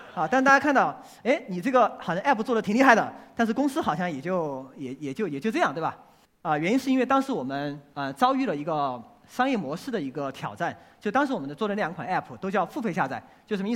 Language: Chinese